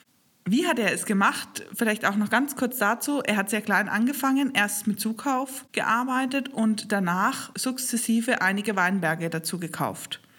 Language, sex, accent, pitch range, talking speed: German, female, German, 175-220 Hz, 155 wpm